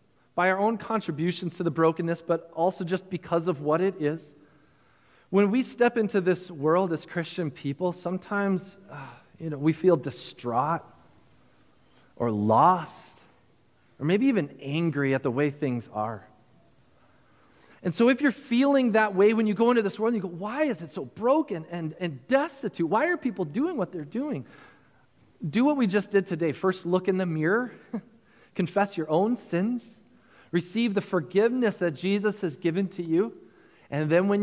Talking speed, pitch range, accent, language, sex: 175 wpm, 165-205 Hz, American, English, male